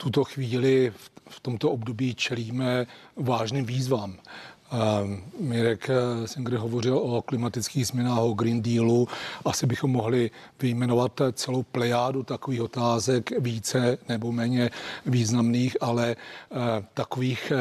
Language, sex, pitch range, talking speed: Czech, male, 120-135 Hz, 110 wpm